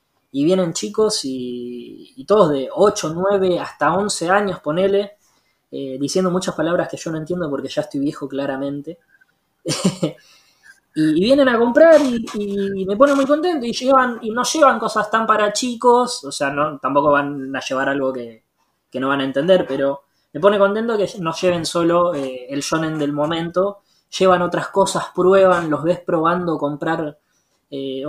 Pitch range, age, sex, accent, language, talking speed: 145-205 Hz, 20-39, female, Argentinian, Spanish, 175 wpm